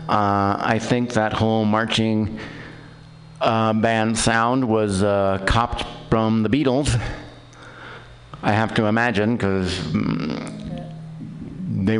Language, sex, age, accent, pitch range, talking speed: English, male, 50-69, American, 105-145 Hz, 110 wpm